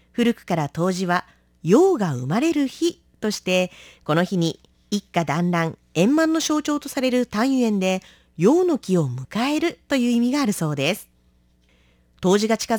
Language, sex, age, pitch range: Japanese, female, 40-59, 180-265 Hz